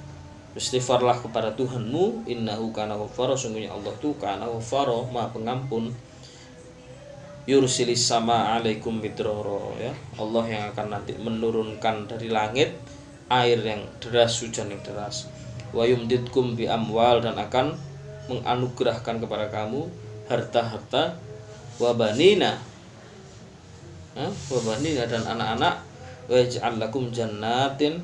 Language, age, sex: Malay, 20-39, male